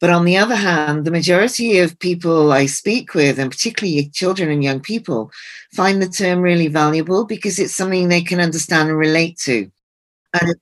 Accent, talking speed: British, 190 wpm